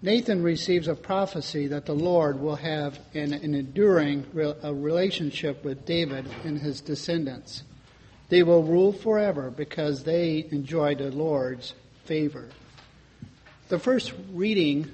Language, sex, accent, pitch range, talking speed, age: English, male, American, 140-175 Hz, 125 wpm, 50-69